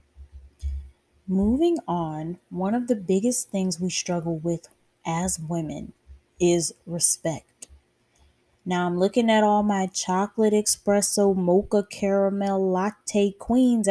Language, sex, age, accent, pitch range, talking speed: English, female, 20-39, American, 165-190 Hz, 110 wpm